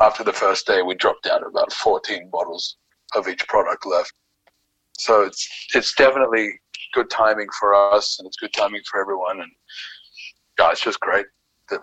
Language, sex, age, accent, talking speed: English, male, 30-49, American, 180 wpm